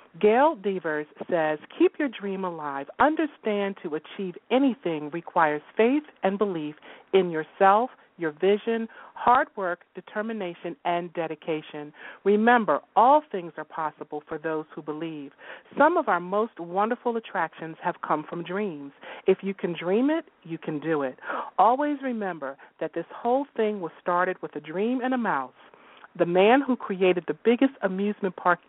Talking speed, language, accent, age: 155 wpm, English, American, 40-59